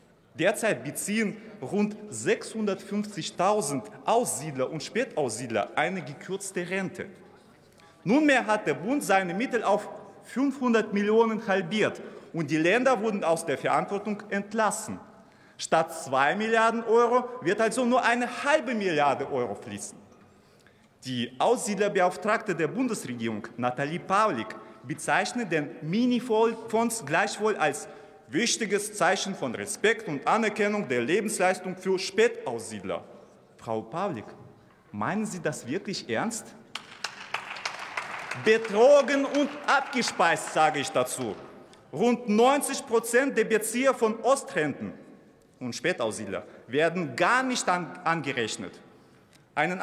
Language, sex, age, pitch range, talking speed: German, male, 30-49, 180-230 Hz, 105 wpm